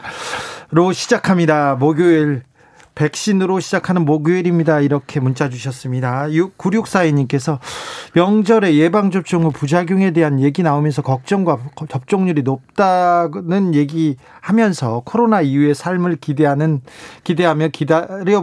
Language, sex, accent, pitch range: Korean, male, native, 145-185 Hz